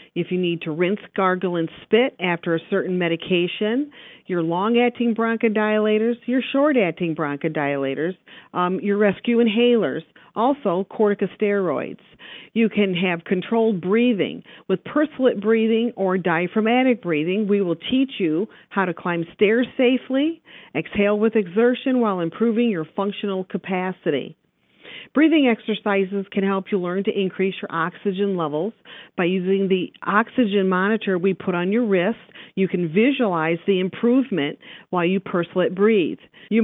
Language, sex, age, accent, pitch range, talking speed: English, female, 50-69, American, 175-225 Hz, 140 wpm